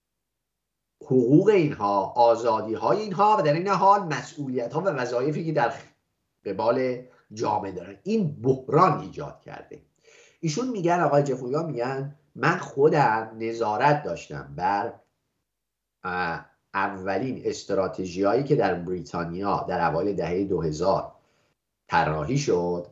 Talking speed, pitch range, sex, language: 120 wpm, 100-150 Hz, male, English